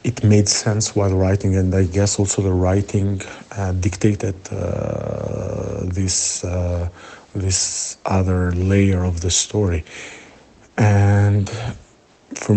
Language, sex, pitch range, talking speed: Italian, male, 95-105 Hz, 115 wpm